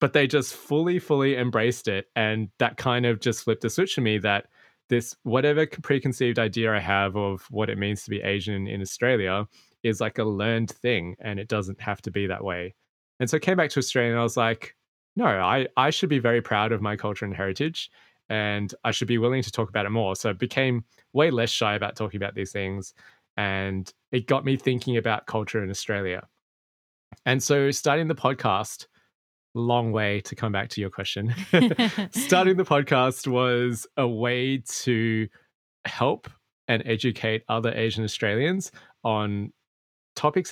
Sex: male